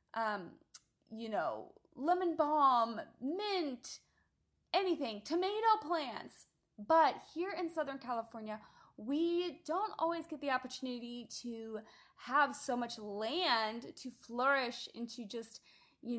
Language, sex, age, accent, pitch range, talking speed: English, female, 20-39, American, 235-330 Hz, 115 wpm